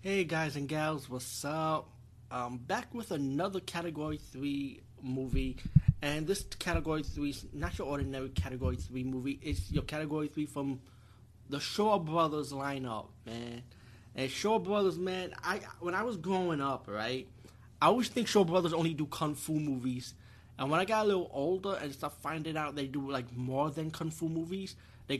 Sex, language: male, English